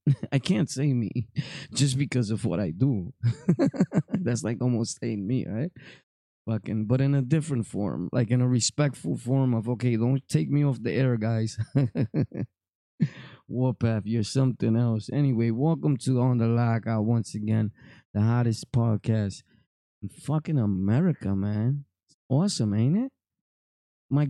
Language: English